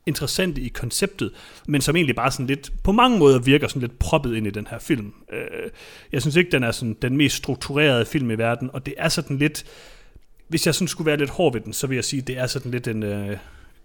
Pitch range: 110-140 Hz